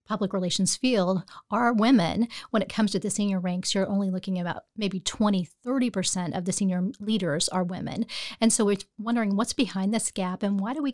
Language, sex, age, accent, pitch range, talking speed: English, female, 40-59, American, 190-230 Hz, 210 wpm